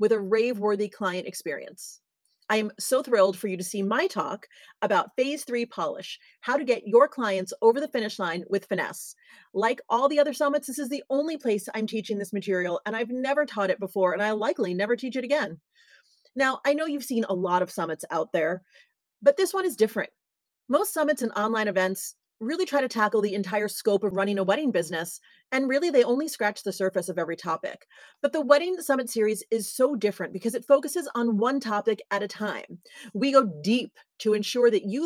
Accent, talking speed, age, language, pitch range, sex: American, 210 wpm, 30-49, English, 200-270 Hz, female